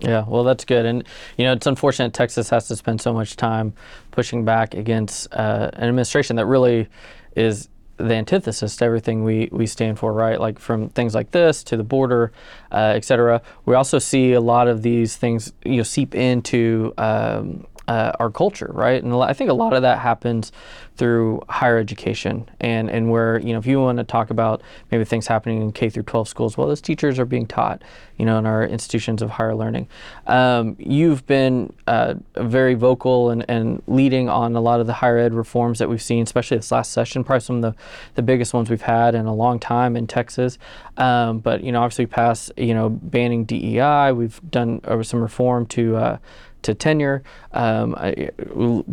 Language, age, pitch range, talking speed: English, 20-39, 115-125 Hz, 200 wpm